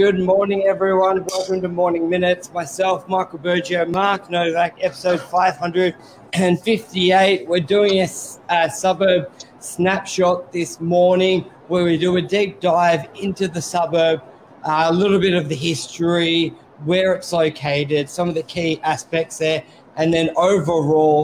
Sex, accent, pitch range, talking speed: male, Australian, 160-180 Hz, 140 wpm